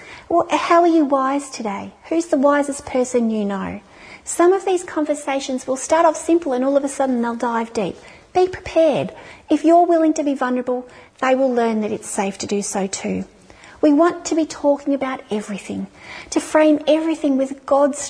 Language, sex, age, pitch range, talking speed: English, female, 40-59, 225-290 Hz, 190 wpm